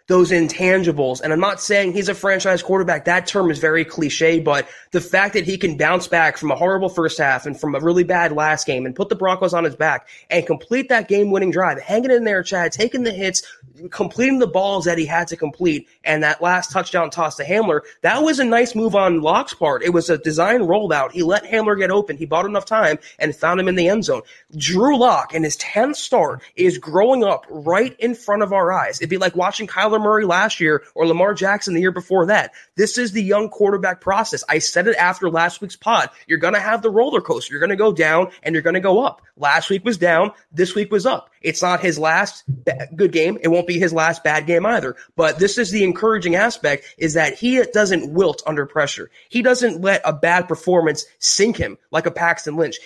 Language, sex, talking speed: English, male, 235 wpm